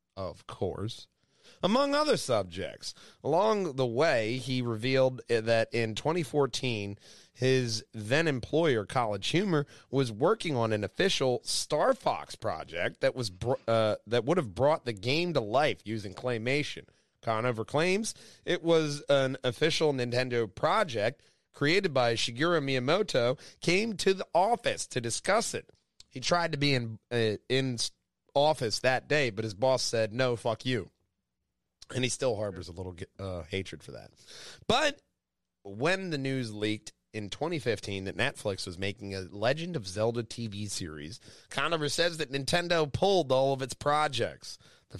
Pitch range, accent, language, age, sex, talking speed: 110-145 Hz, American, English, 30-49, male, 150 wpm